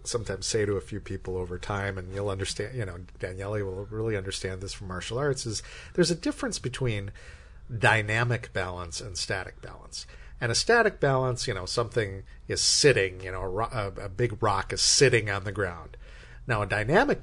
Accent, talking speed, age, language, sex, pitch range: American, 190 wpm, 50-69, English, male, 100-125 Hz